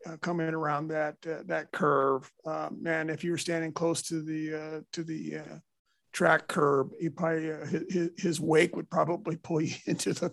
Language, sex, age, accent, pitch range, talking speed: English, male, 50-69, American, 155-170 Hz, 205 wpm